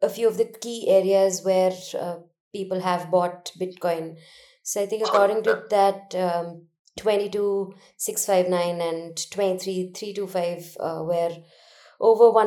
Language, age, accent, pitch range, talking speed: English, 20-39, Indian, 175-220 Hz, 120 wpm